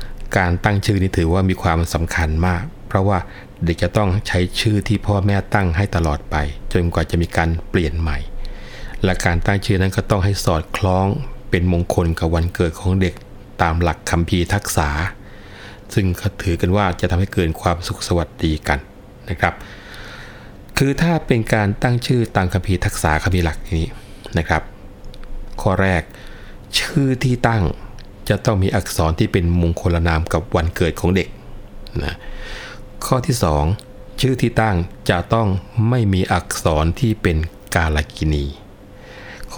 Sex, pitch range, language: male, 85-105 Hz, Thai